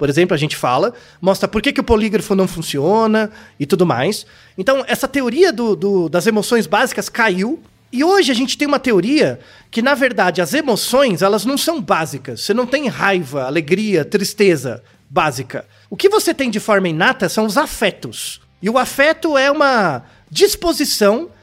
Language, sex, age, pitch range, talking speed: Portuguese, male, 40-59, 185-280 Hz, 170 wpm